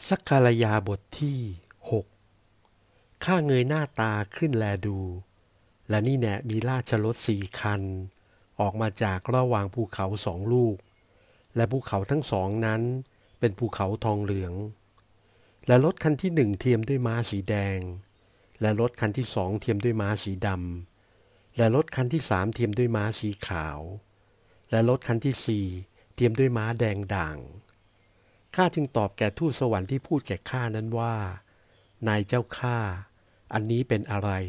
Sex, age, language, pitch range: male, 60-79, Thai, 100-120 Hz